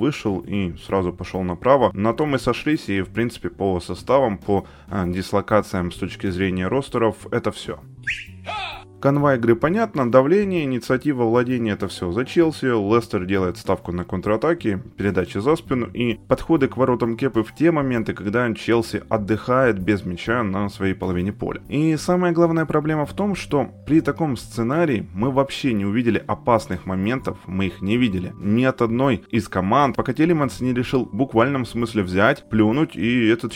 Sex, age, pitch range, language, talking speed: male, 20-39, 100-135 Hz, Ukrainian, 165 wpm